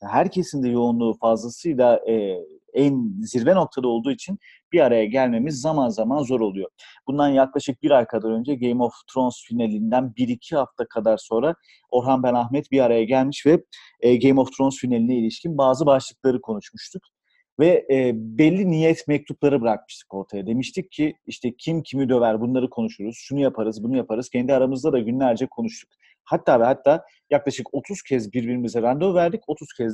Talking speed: 165 wpm